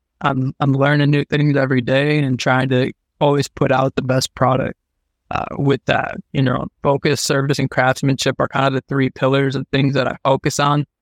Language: English